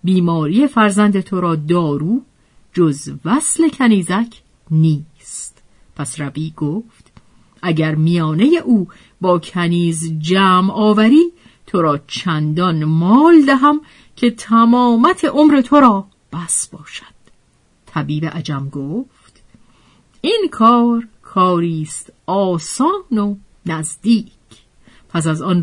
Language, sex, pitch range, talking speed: Persian, female, 165-260 Hz, 100 wpm